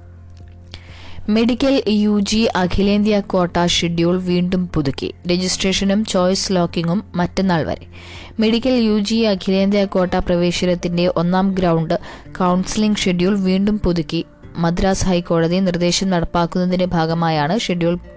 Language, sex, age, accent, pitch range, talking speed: Malayalam, female, 20-39, native, 170-205 Hz, 100 wpm